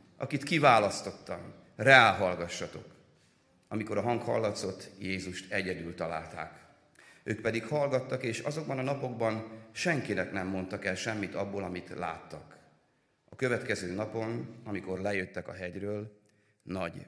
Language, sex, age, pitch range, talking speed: Hungarian, male, 30-49, 115-155 Hz, 115 wpm